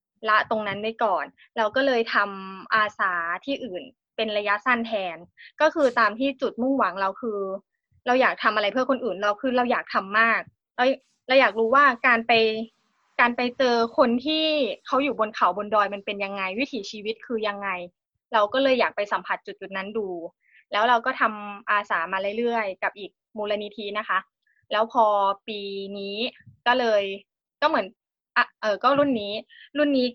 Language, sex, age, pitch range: Thai, female, 20-39, 210-265 Hz